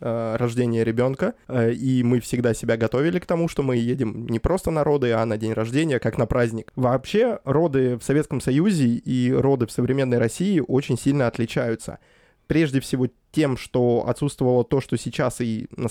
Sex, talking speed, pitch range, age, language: male, 175 wpm, 120-140 Hz, 20-39, Russian